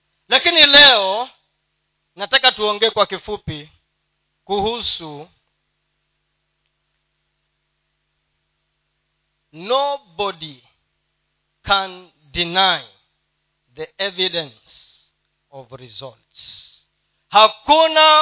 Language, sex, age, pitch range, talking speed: Swahili, male, 40-59, 165-275 Hz, 50 wpm